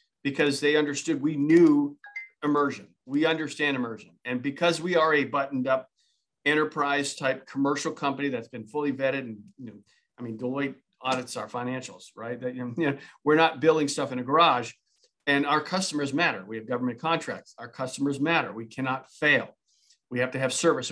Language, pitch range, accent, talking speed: English, 130-155 Hz, American, 180 wpm